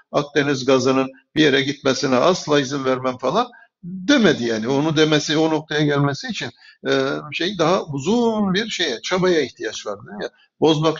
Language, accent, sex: Turkish, native, male